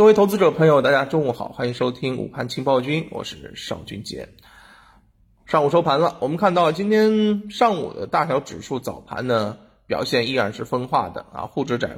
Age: 20-39